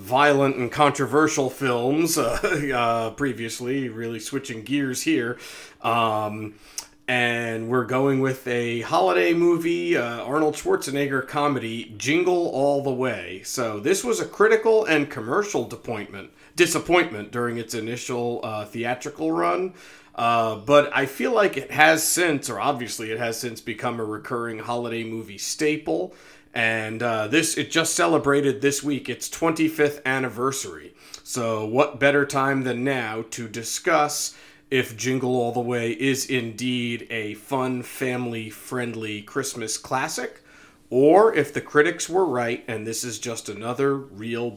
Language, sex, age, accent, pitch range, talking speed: English, male, 40-59, American, 115-150 Hz, 140 wpm